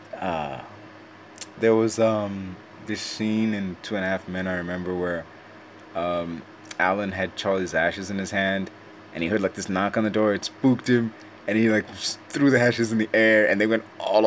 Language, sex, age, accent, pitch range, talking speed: English, male, 20-39, American, 85-110 Hz, 200 wpm